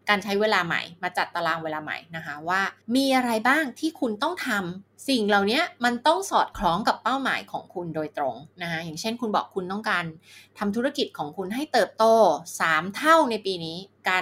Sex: female